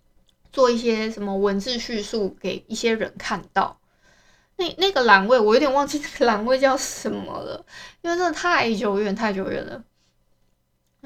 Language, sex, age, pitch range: Chinese, female, 20-39, 195-260 Hz